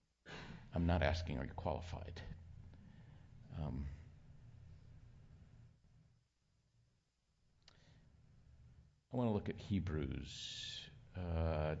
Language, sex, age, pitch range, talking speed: English, male, 50-69, 85-120 Hz, 70 wpm